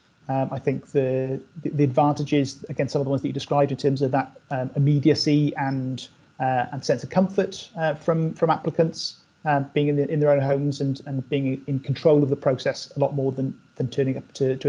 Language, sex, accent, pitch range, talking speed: English, male, British, 130-150 Hz, 230 wpm